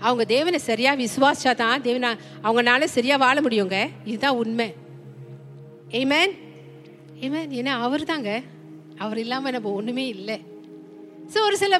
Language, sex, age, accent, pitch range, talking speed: Tamil, female, 40-59, native, 205-295 Hz, 100 wpm